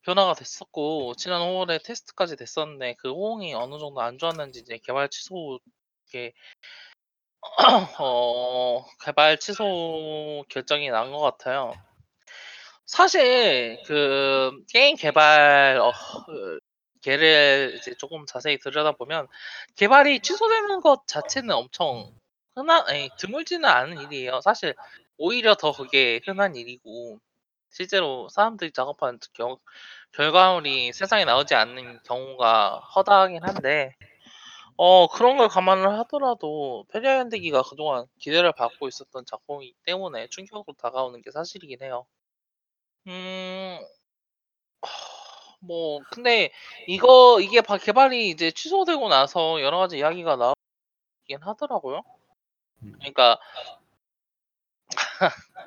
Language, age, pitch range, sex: Korean, 20-39, 135-210 Hz, male